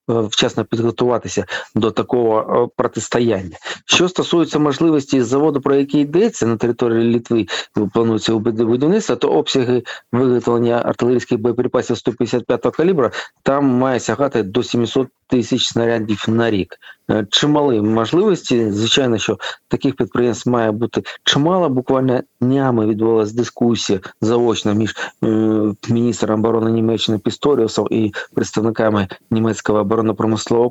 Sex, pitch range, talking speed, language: male, 110-125 Hz, 110 wpm, Ukrainian